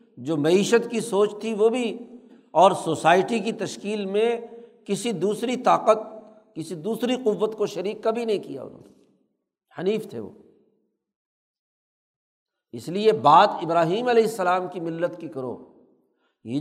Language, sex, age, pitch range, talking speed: Urdu, male, 60-79, 175-230 Hz, 140 wpm